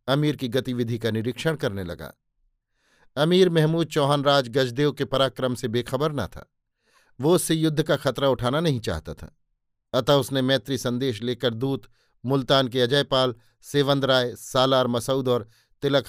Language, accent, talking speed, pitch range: Hindi, native, 155 wpm, 120-140 Hz